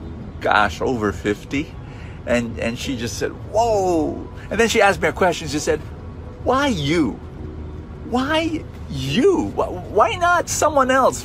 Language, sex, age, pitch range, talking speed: English, male, 50-69, 175-260 Hz, 140 wpm